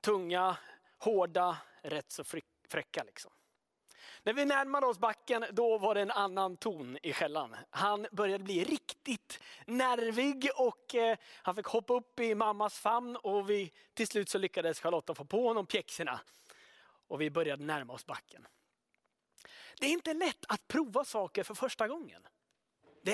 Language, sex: Swedish, male